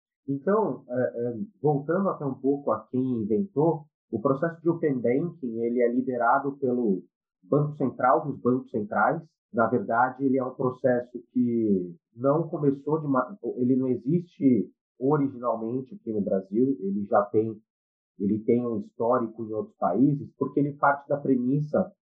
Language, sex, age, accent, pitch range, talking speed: Portuguese, male, 40-59, Brazilian, 120-150 Hz, 145 wpm